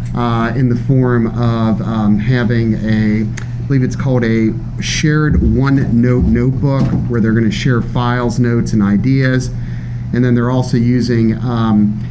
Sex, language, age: male, English, 40-59